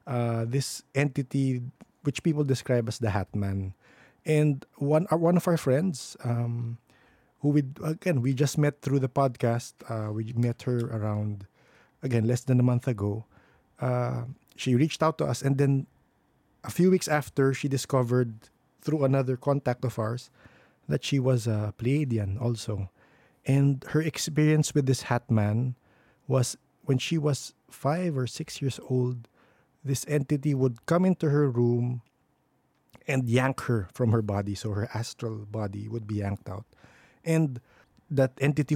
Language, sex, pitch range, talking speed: English, male, 120-145 Hz, 160 wpm